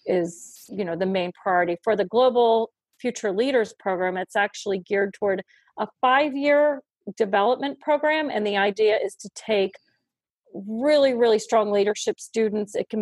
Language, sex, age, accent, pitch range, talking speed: English, female, 40-59, American, 185-220 Hz, 150 wpm